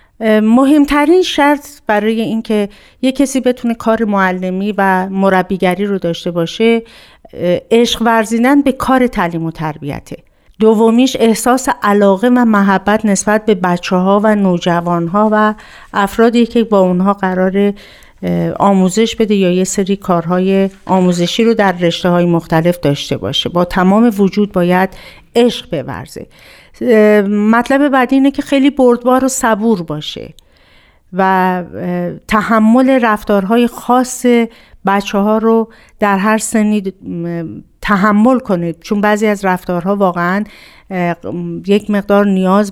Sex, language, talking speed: female, Persian, 125 wpm